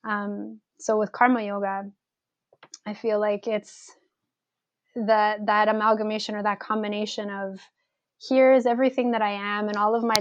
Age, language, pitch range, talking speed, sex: 20-39, English, 205-225 Hz, 145 wpm, female